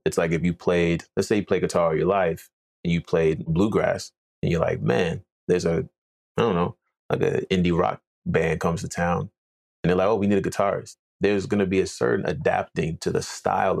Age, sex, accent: 30-49, male, American